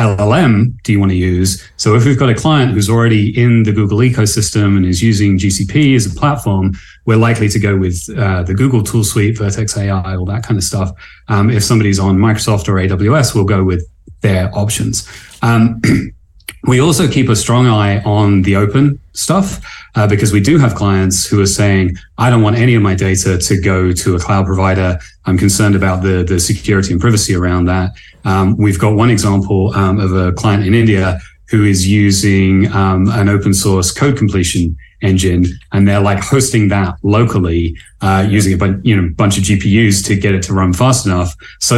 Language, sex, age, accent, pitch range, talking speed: English, male, 30-49, British, 95-115 Hz, 205 wpm